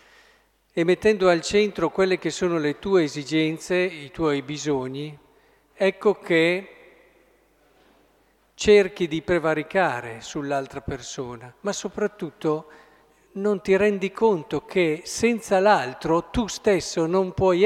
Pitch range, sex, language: 145-195 Hz, male, Italian